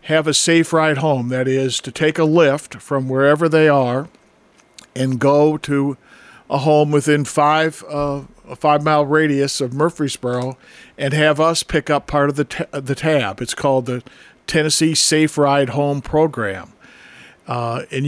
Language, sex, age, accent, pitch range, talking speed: English, male, 50-69, American, 135-155 Hz, 165 wpm